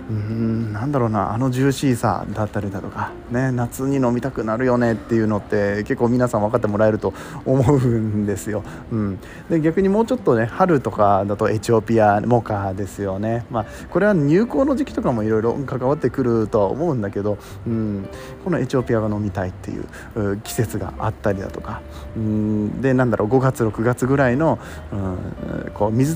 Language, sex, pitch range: Japanese, male, 105-130 Hz